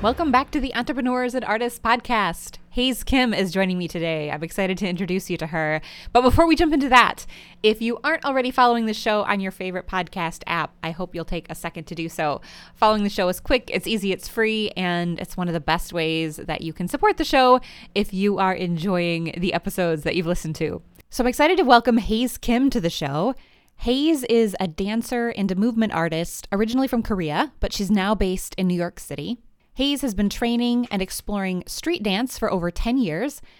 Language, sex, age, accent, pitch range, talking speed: English, female, 20-39, American, 180-240 Hz, 215 wpm